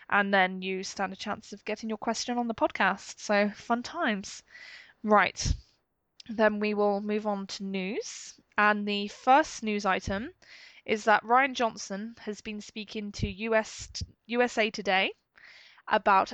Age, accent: 10-29, British